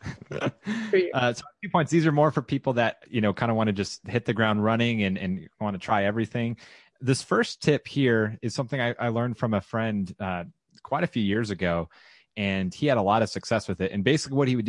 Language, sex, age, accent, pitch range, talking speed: English, male, 30-49, American, 105-125 Hz, 245 wpm